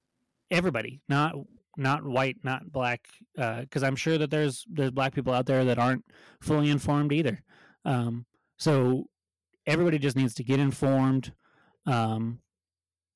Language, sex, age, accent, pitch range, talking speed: English, male, 30-49, American, 115-135 Hz, 140 wpm